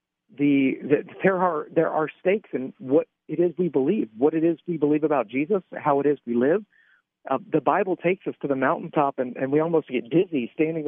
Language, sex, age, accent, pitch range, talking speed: English, male, 50-69, American, 135-175 Hz, 220 wpm